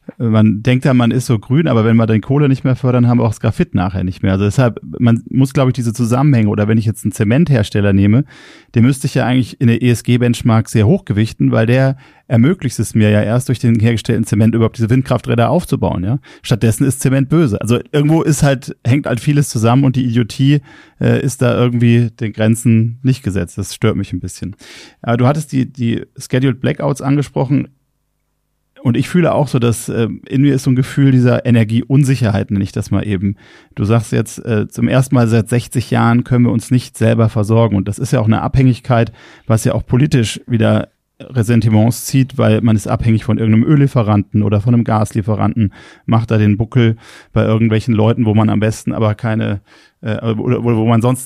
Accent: German